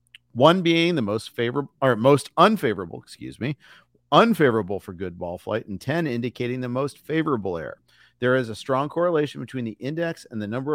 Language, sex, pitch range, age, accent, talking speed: English, male, 110-150 Hz, 50-69, American, 185 wpm